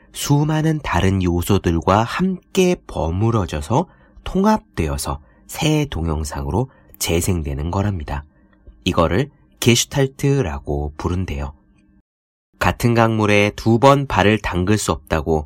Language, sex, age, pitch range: Korean, male, 30-49, 90-135 Hz